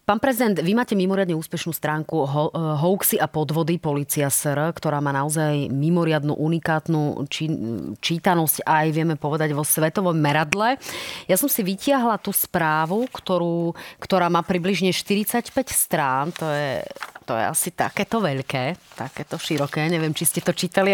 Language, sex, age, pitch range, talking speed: Slovak, female, 30-49, 160-200 Hz, 150 wpm